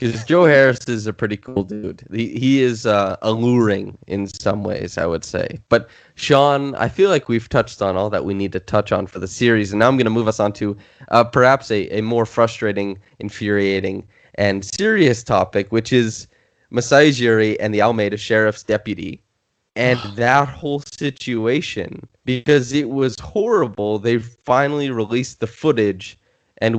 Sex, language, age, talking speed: male, English, 20-39, 175 wpm